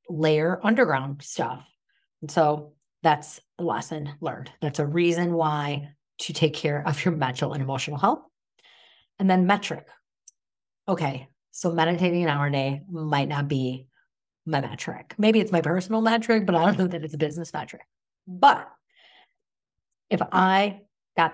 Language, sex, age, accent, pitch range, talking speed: English, female, 40-59, American, 150-175 Hz, 155 wpm